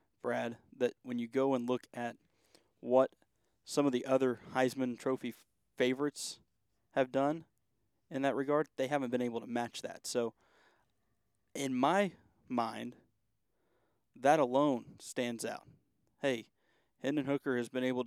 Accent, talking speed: American, 140 wpm